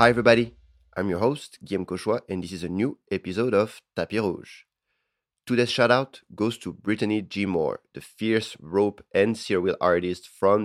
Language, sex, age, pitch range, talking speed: English, male, 30-49, 90-110 Hz, 175 wpm